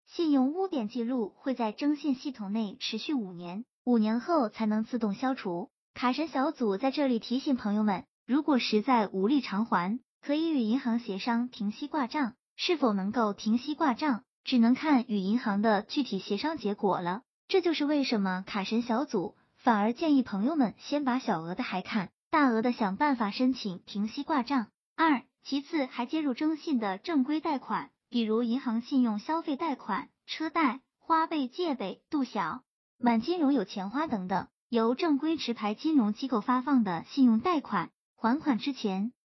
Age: 20-39